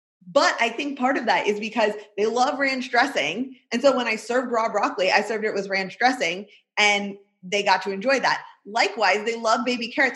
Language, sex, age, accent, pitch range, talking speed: English, female, 20-39, American, 185-250 Hz, 215 wpm